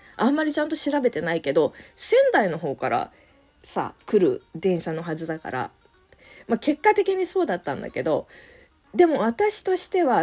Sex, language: female, Japanese